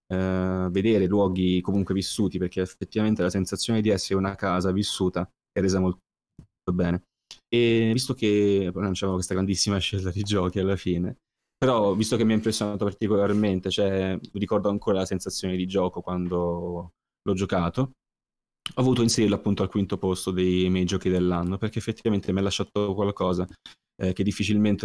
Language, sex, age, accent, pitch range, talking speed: Italian, male, 20-39, native, 90-100 Hz, 160 wpm